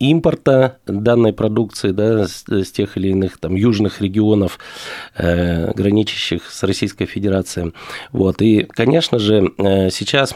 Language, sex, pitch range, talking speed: Russian, male, 95-120 Hz, 115 wpm